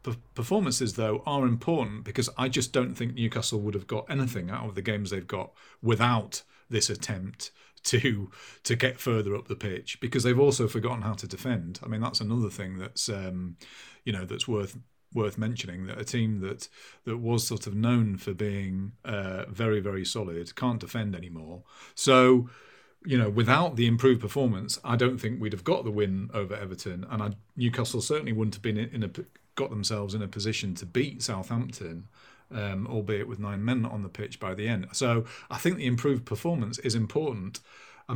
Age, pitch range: 40-59, 100-120 Hz